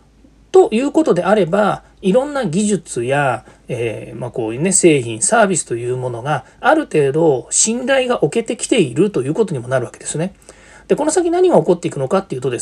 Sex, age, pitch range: male, 40-59, 145-215 Hz